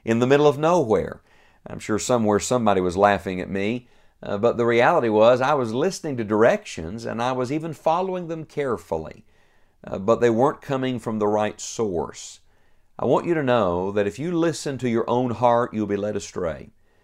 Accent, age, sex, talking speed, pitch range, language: American, 50-69, male, 195 wpm, 110-150 Hz, English